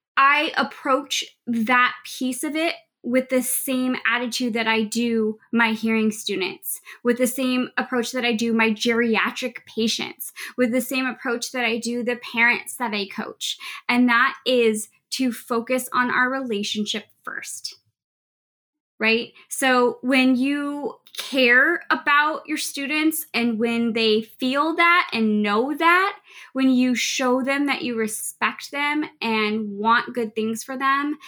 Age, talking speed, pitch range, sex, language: 20-39, 150 wpm, 225-275 Hz, female, English